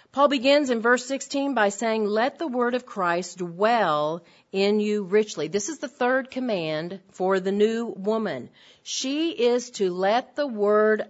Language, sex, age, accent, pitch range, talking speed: English, female, 40-59, American, 190-245 Hz, 170 wpm